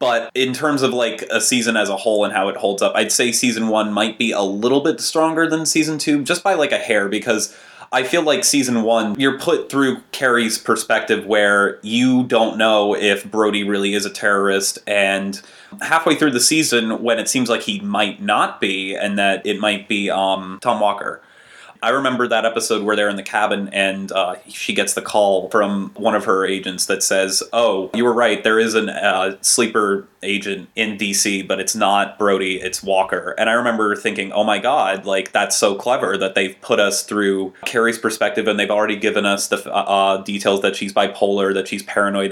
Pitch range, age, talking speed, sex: 100-120 Hz, 30-49, 205 wpm, male